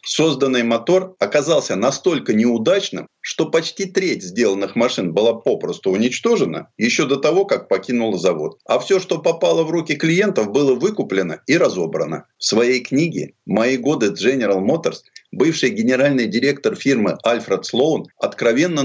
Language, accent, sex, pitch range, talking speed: Russian, native, male, 125-185 Hz, 140 wpm